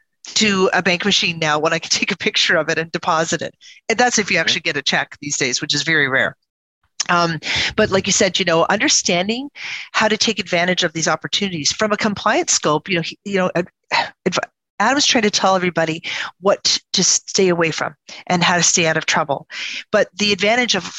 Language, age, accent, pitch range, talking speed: English, 40-59, American, 170-210 Hz, 215 wpm